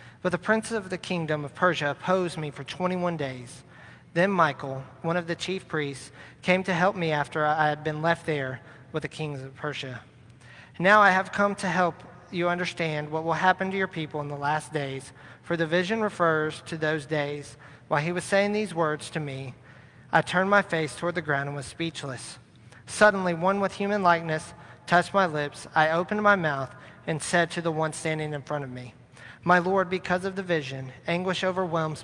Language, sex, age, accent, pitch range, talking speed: English, male, 40-59, American, 135-180 Hz, 200 wpm